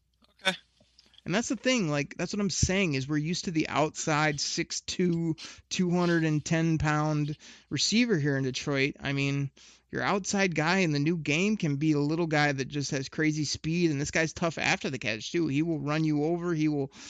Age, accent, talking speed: 30-49, American, 190 wpm